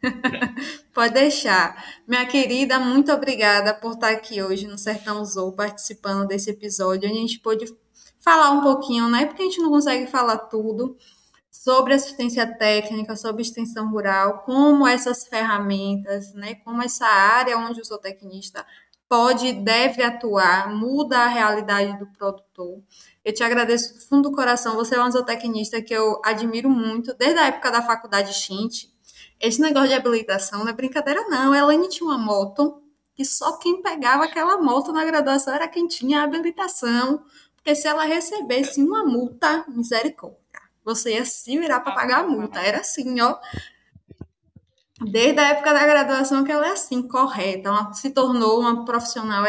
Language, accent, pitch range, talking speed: Portuguese, Brazilian, 210-270 Hz, 165 wpm